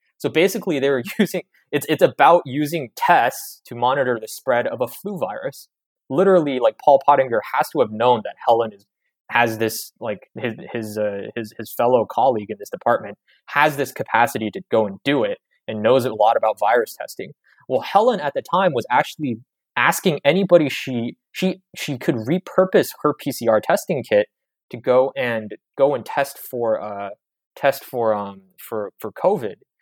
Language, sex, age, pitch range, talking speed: English, male, 20-39, 110-160 Hz, 180 wpm